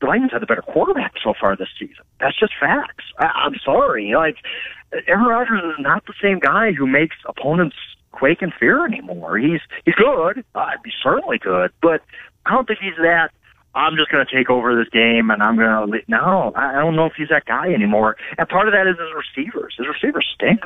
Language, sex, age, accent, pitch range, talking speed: English, male, 50-69, American, 125-185 Hz, 220 wpm